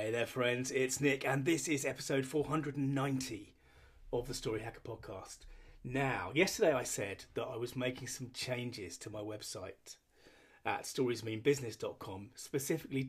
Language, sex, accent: English, male, British